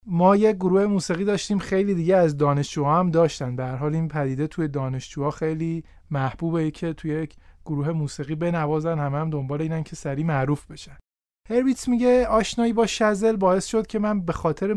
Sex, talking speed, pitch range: male, 175 wpm, 160-215 Hz